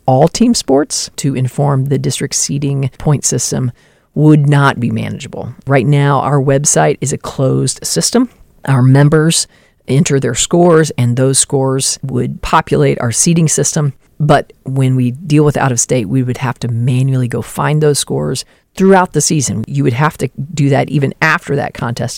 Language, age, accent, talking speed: English, 40-59, American, 170 wpm